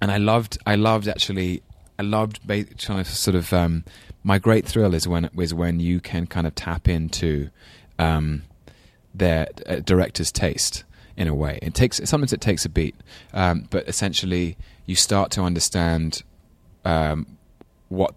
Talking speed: 165 wpm